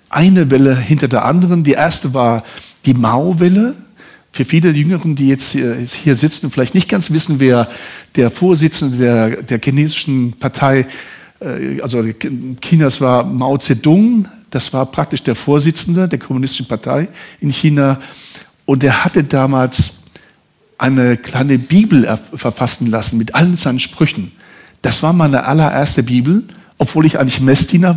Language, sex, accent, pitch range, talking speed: German, male, German, 130-170 Hz, 135 wpm